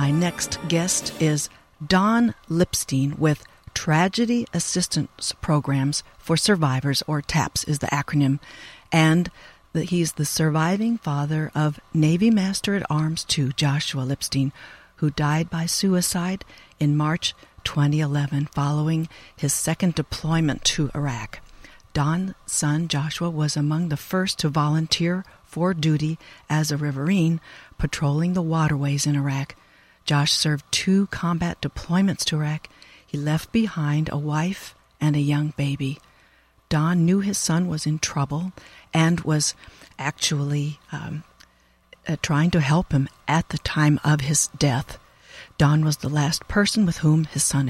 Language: English